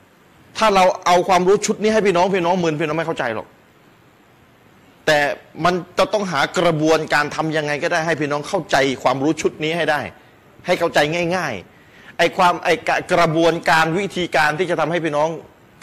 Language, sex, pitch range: Thai, male, 145-175 Hz